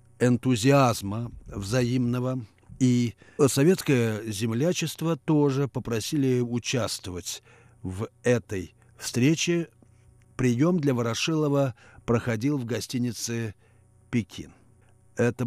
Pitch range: 110-135 Hz